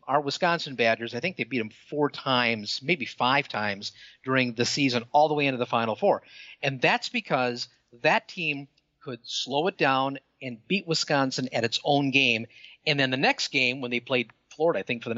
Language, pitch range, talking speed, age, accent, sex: English, 130-160 Hz, 205 wpm, 50-69, American, male